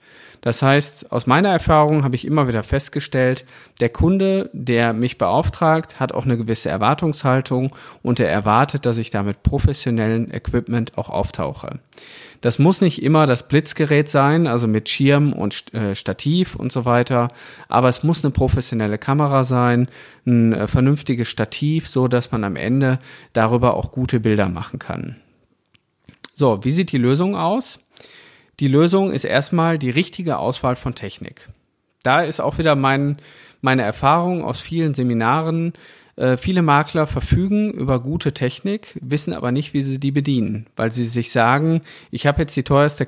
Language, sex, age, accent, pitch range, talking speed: German, male, 40-59, German, 120-150 Hz, 155 wpm